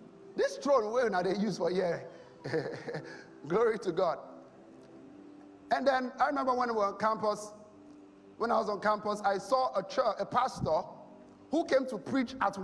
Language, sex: English, male